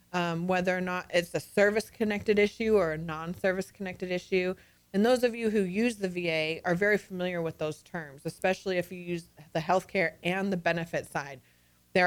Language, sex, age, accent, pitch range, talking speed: English, female, 30-49, American, 175-205 Hz, 190 wpm